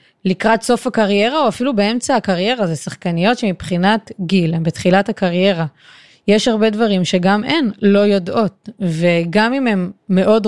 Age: 20-39